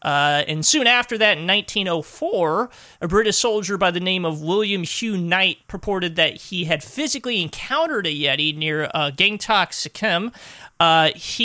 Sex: male